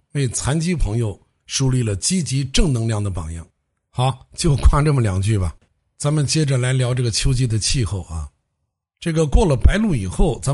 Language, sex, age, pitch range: Chinese, male, 60-79, 105-145 Hz